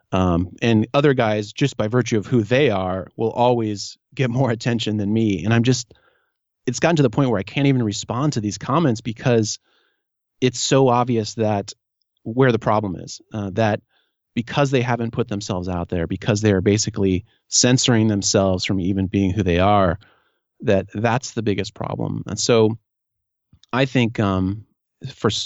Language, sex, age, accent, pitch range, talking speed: English, male, 30-49, American, 100-125 Hz, 175 wpm